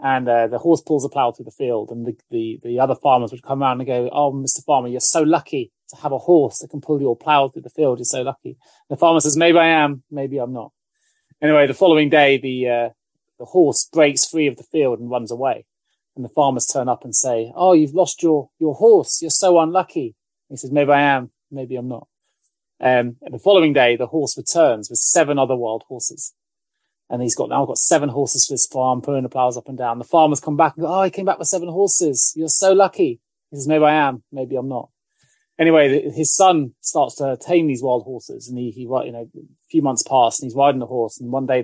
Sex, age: male, 30-49